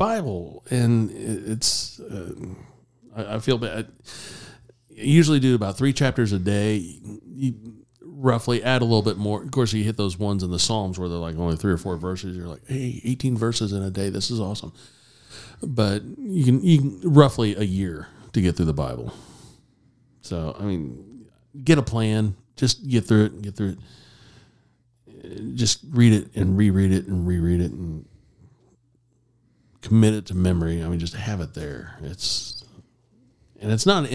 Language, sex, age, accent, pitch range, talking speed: English, male, 40-59, American, 95-120 Hz, 180 wpm